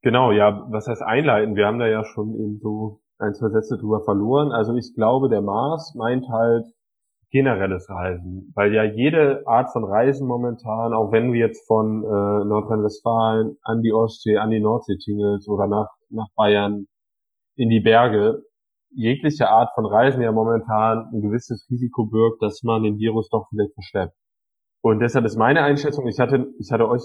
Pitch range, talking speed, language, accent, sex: 105-125 Hz, 180 wpm, German, German, male